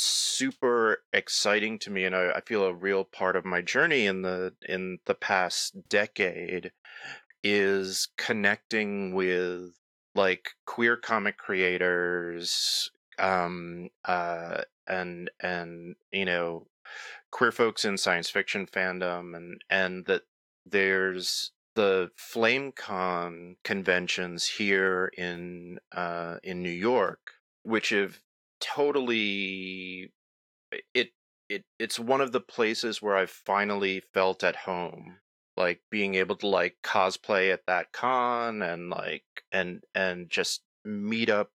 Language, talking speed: English, 120 wpm